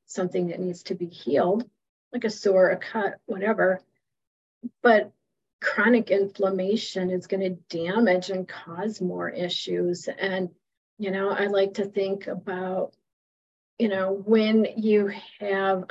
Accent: American